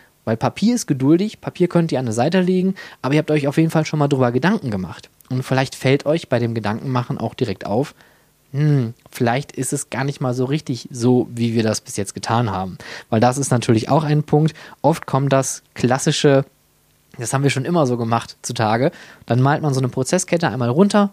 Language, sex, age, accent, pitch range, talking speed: German, male, 20-39, German, 120-150 Hz, 220 wpm